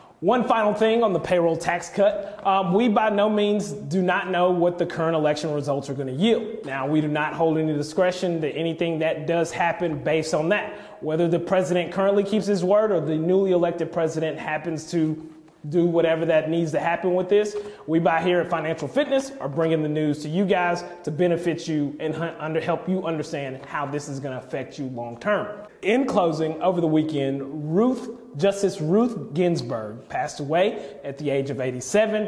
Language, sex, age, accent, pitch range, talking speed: English, male, 30-49, American, 150-190 Hz, 195 wpm